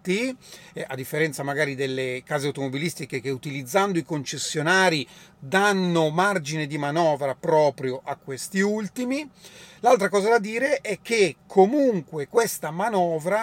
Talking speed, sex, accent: 120 wpm, male, native